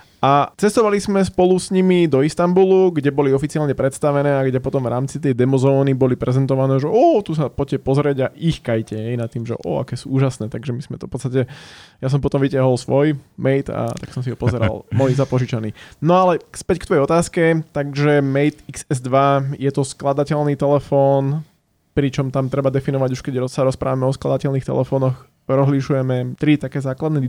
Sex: male